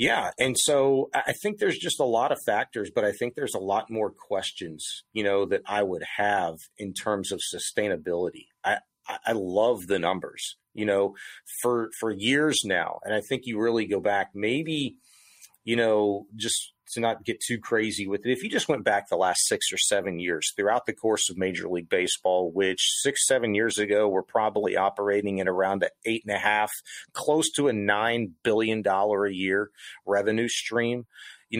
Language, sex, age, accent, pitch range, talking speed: English, male, 30-49, American, 100-125 Hz, 195 wpm